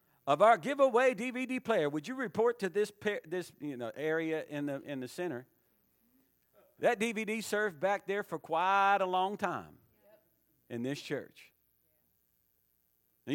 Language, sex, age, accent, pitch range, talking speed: English, male, 50-69, American, 145-215 Hz, 150 wpm